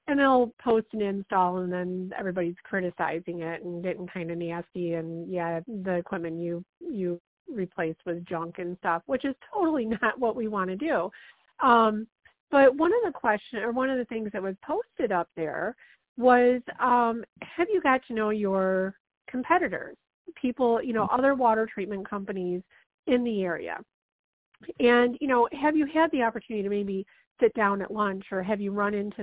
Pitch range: 185-245 Hz